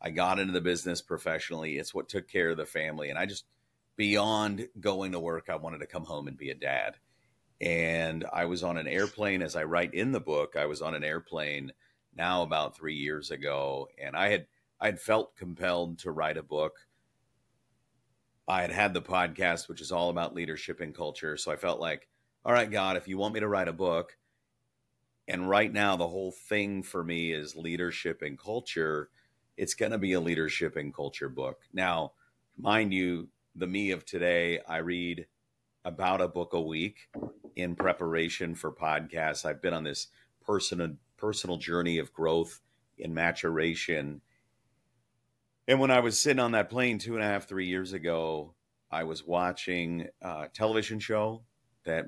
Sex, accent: male, American